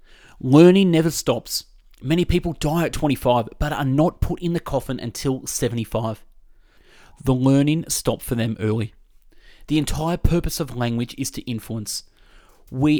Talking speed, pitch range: 150 wpm, 120-155 Hz